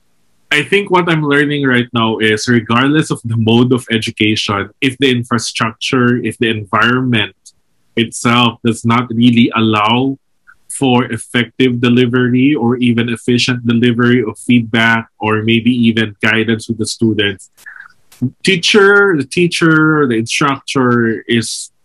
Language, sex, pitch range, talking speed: English, male, 115-135 Hz, 130 wpm